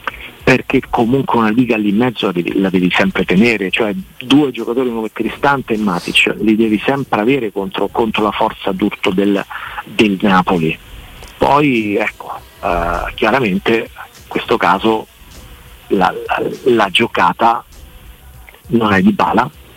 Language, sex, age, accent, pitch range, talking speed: Italian, male, 50-69, native, 100-125 Hz, 145 wpm